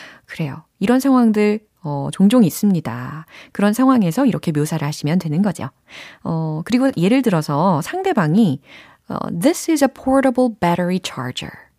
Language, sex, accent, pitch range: Korean, female, native, 155-250 Hz